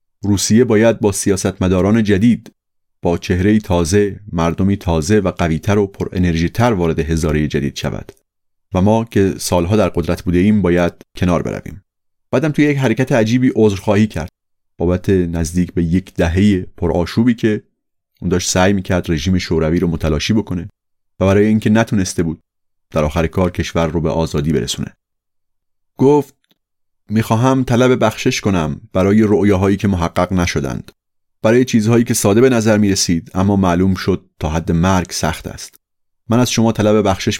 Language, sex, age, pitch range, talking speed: Persian, male, 30-49, 90-105 Hz, 155 wpm